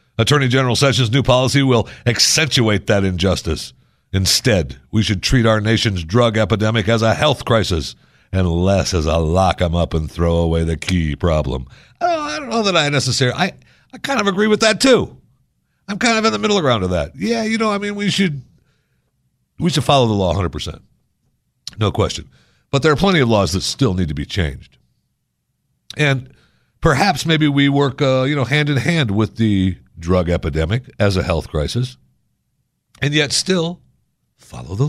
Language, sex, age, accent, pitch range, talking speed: English, male, 60-79, American, 85-140 Hz, 185 wpm